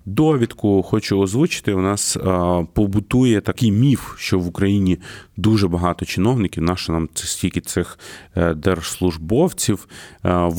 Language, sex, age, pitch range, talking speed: Ukrainian, male, 30-49, 90-110 Hz, 120 wpm